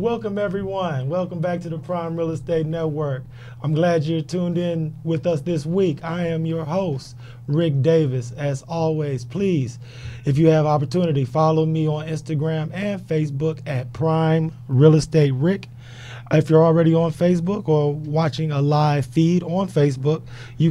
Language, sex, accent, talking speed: English, male, American, 160 wpm